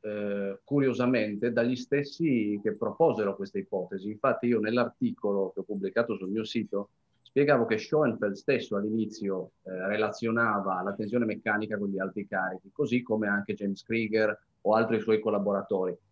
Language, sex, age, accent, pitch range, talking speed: Italian, male, 30-49, native, 100-120 Hz, 150 wpm